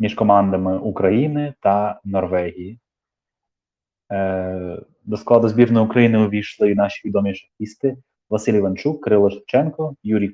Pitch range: 100-125 Hz